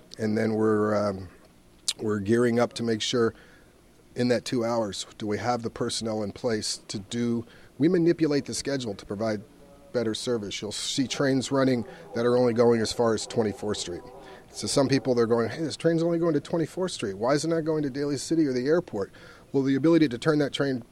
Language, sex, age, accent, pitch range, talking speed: English, male, 40-59, American, 110-130 Hz, 220 wpm